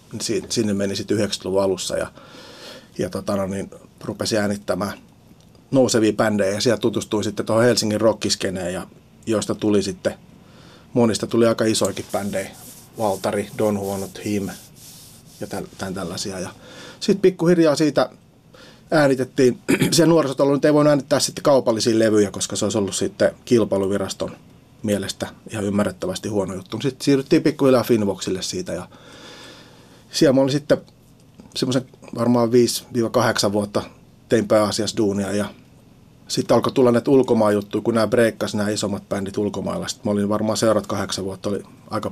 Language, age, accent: Finnish, 30-49, native